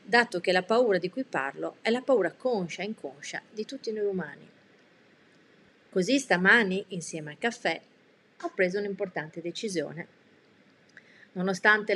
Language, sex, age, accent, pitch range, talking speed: Italian, female, 30-49, native, 180-230 Hz, 135 wpm